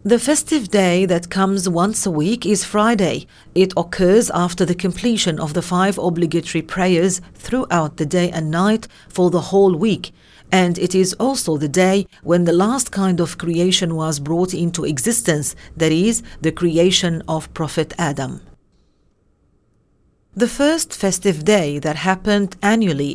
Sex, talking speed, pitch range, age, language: female, 155 wpm, 160-195 Hz, 40-59, English